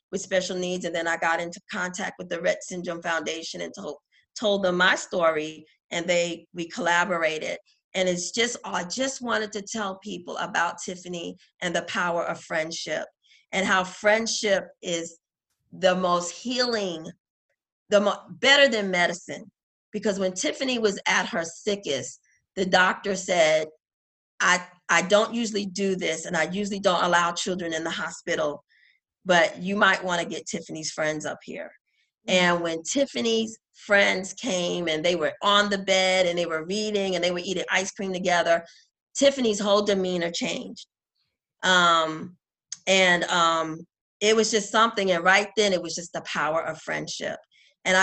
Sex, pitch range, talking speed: female, 170-200 Hz, 160 wpm